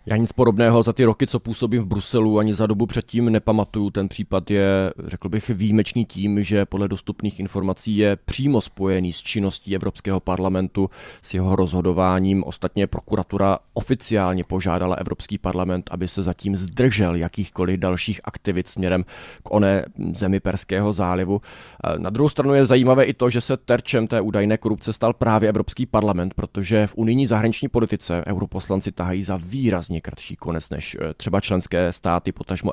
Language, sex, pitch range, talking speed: Czech, male, 95-110 Hz, 160 wpm